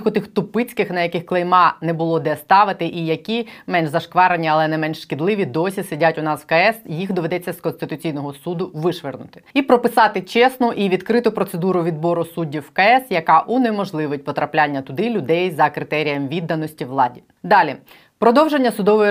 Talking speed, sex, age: 165 wpm, female, 20-39